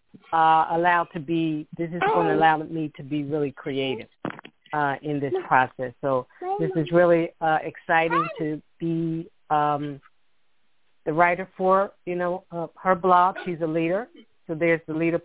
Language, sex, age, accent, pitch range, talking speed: English, female, 50-69, American, 160-185 Hz, 165 wpm